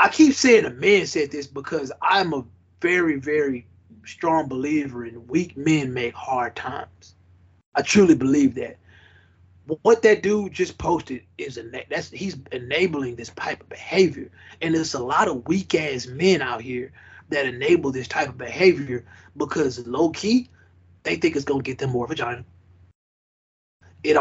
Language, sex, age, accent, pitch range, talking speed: English, male, 20-39, American, 115-180 Hz, 165 wpm